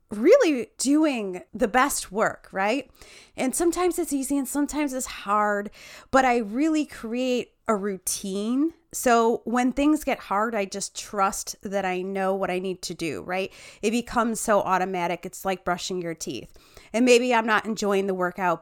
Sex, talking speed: female, 170 wpm